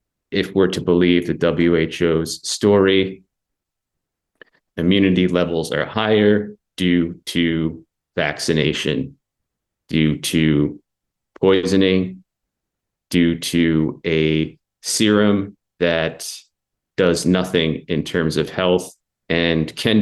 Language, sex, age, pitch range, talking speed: English, male, 30-49, 80-95 Hz, 90 wpm